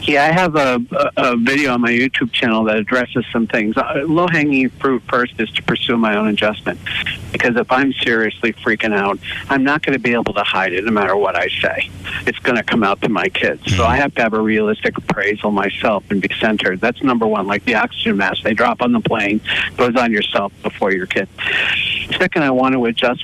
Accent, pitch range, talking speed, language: American, 110-140 Hz, 225 wpm, English